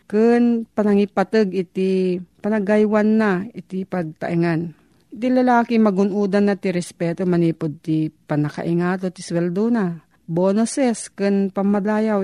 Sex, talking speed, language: female, 110 wpm, Filipino